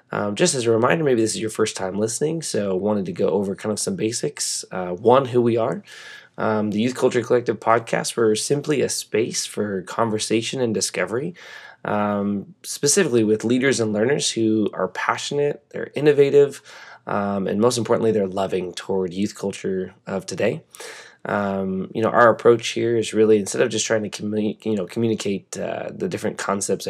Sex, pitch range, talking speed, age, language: male, 95-115 Hz, 185 wpm, 20-39, English